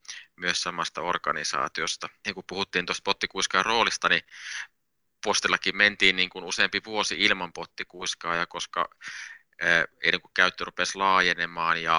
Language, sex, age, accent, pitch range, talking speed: Finnish, male, 20-39, native, 85-95 Hz, 115 wpm